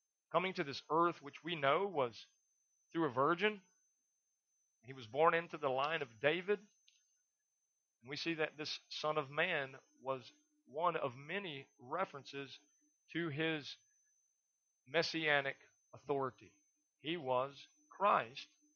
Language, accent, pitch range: English, American, 140-180 Hz